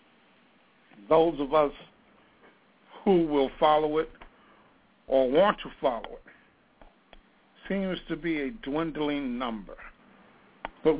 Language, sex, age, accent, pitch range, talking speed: English, male, 60-79, American, 135-180 Hz, 105 wpm